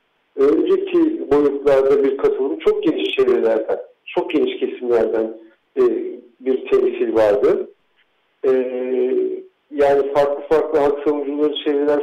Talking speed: 90 wpm